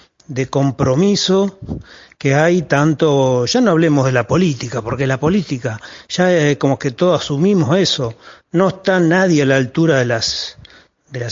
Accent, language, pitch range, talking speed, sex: Argentinian, Spanish, 130-165 Hz, 155 wpm, male